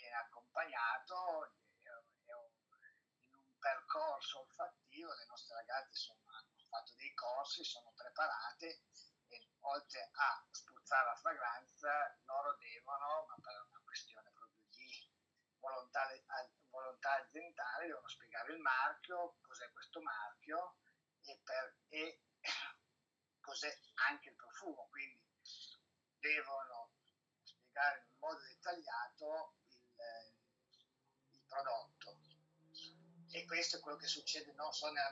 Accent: native